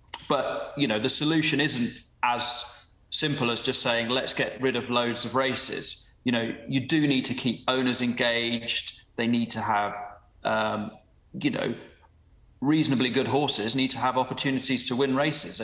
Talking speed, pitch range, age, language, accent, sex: 170 wpm, 110-130 Hz, 30-49, English, British, male